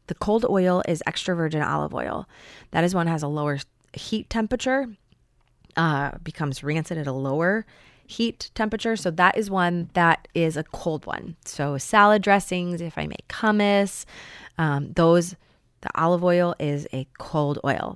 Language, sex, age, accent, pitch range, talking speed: English, female, 20-39, American, 145-185 Hz, 165 wpm